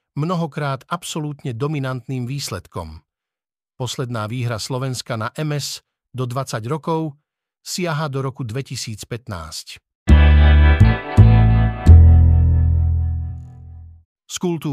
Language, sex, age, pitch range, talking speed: Slovak, male, 50-69, 115-140 Hz, 65 wpm